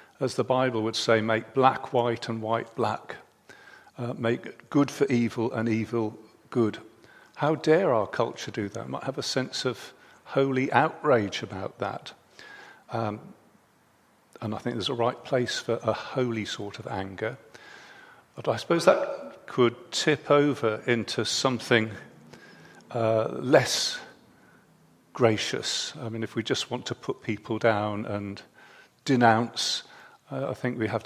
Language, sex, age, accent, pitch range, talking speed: English, male, 50-69, British, 115-140 Hz, 145 wpm